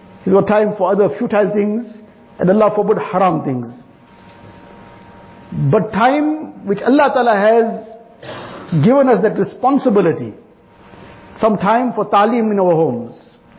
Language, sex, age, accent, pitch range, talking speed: English, male, 50-69, Indian, 195-245 Hz, 130 wpm